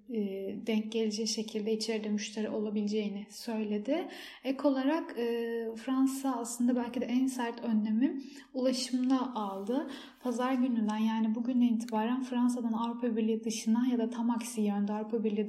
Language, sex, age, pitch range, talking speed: Turkish, female, 10-29, 220-250 Hz, 130 wpm